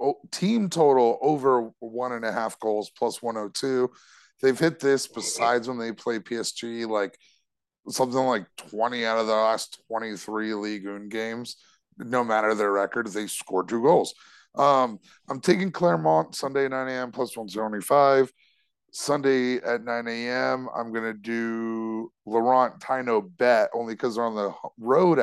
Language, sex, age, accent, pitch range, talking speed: English, male, 30-49, American, 110-130 Hz, 150 wpm